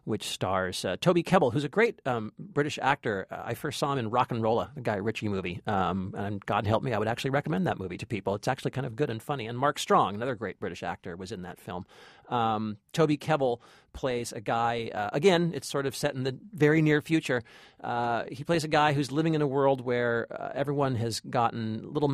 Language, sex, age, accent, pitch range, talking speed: English, male, 40-59, American, 115-145 Hz, 240 wpm